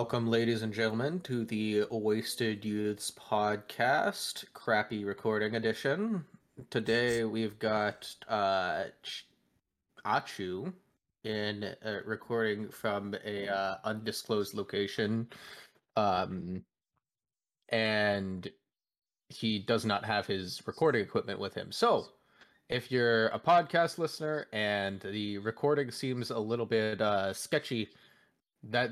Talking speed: 110 wpm